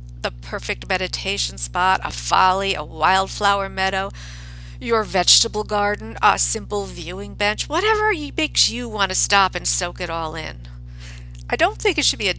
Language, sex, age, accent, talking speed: English, female, 50-69, American, 165 wpm